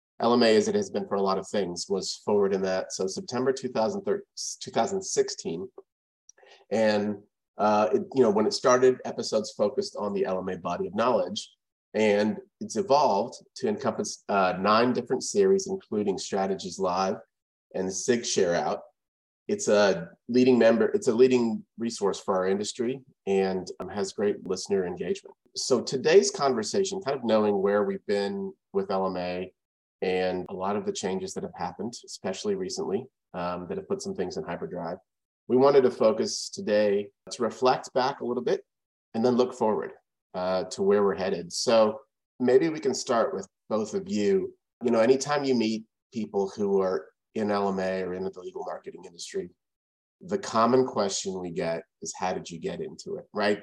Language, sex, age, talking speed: English, male, 30-49, 170 wpm